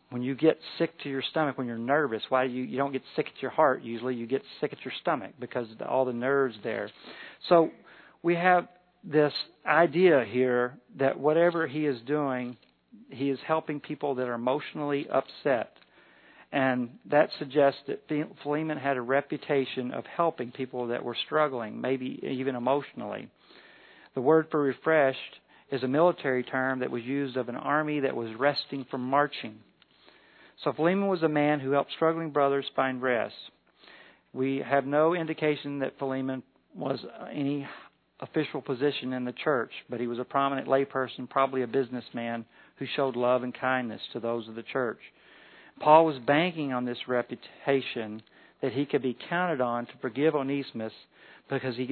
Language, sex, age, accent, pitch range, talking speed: English, male, 50-69, American, 125-150 Hz, 170 wpm